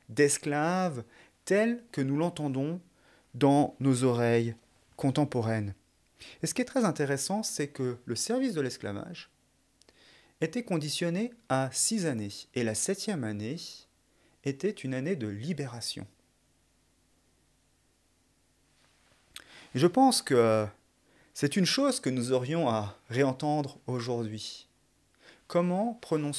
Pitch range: 110-150 Hz